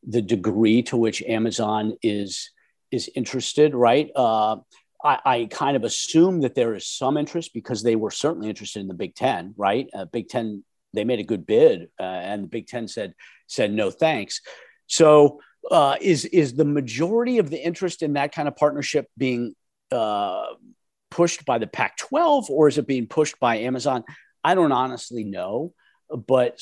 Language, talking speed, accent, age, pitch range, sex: English, 180 wpm, American, 50-69, 110-150 Hz, male